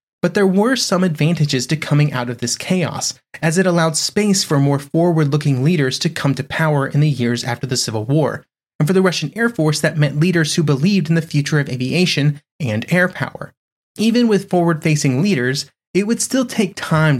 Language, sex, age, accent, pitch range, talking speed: English, male, 30-49, American, 135-175 Hz, 200 wpm